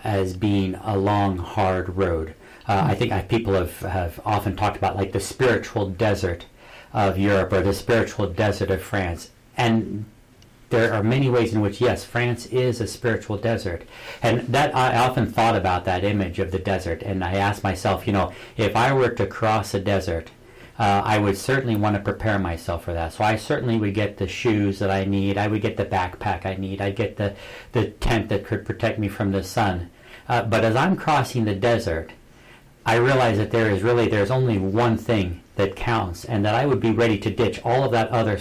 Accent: American